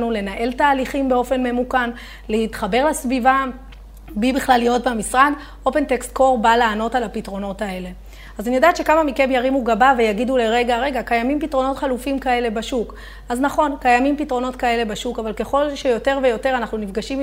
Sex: female